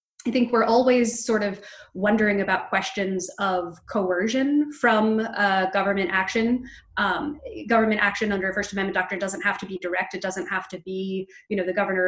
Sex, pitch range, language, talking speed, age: female, 185-225 Hz, English, 185 wpm, 20-39